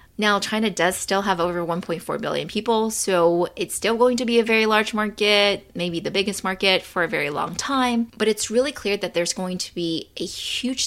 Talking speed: 215 wpm